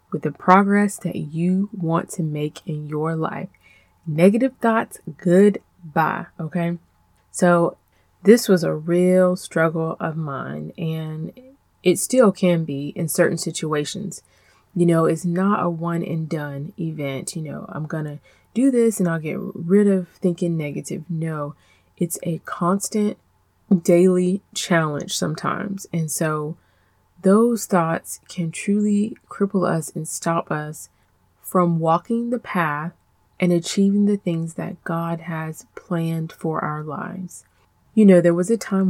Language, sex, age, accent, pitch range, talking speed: English, female, 20-39, American, 155-190 Hz, 140 wpm